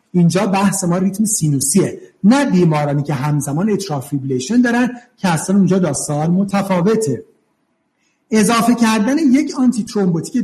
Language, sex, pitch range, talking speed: Persian, male, 165-230 Hz, 120 wpm